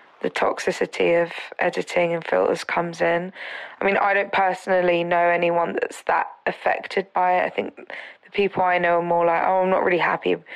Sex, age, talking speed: female, 20-39, 195 wpm